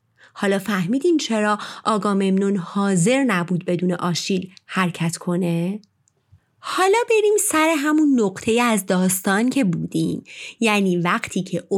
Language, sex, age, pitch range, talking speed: Persian, female, 30-49, 180-300 Hz, 110 wpm